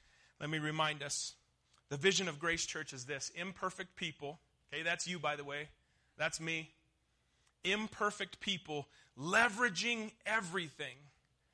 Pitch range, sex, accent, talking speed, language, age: 135-195 Hz, male, American, 130 wpm, English, 30-49